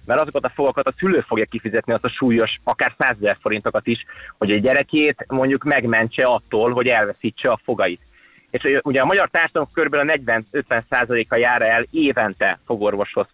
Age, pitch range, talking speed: 30-49, 110-135 Hz, 165 wpm